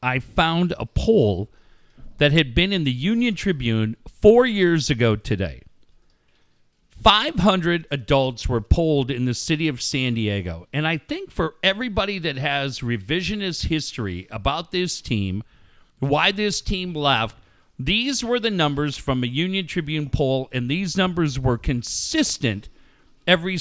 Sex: male